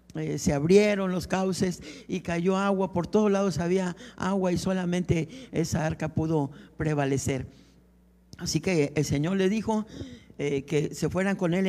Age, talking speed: 60-79, 160 wpm